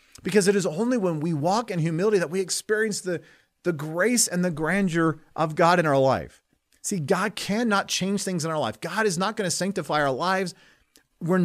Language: English